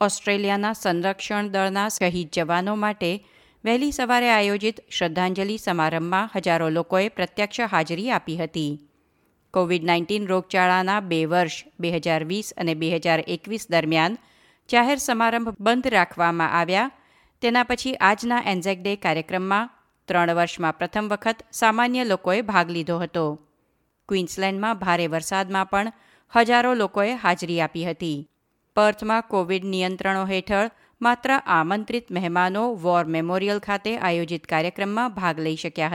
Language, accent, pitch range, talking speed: Gujarati, native, 170-220 Hz, 115 wpm